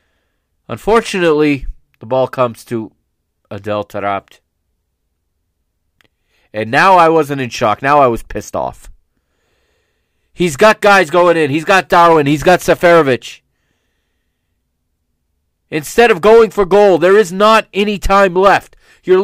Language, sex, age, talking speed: English, male, 40-59, 130 wpm